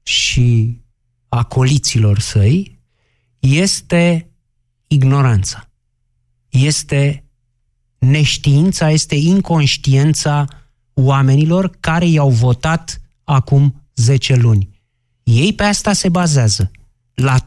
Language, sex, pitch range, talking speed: Romanian, male, 120-175 Hz, 80 wpm